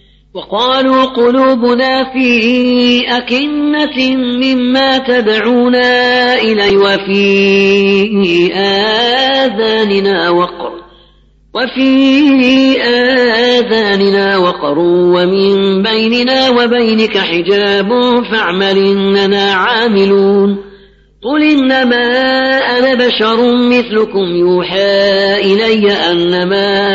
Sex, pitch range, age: female, 195-245 Hz, 40-59